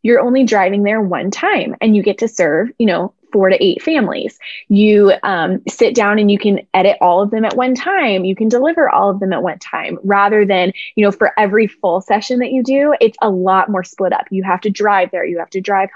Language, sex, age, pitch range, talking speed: English, female, 20-39, 190-250 Hz, 250 wpm